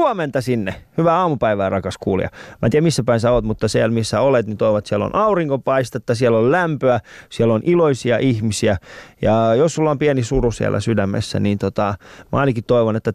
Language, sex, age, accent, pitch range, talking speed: Finnish, male, 20-39, native, 115-150 Hz, 195 wpm